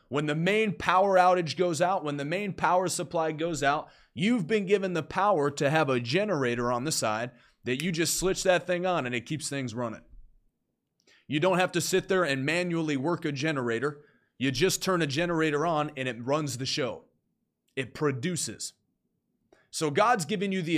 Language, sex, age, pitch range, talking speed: English, male, 30-49, 135-180 Hz, 195 wpm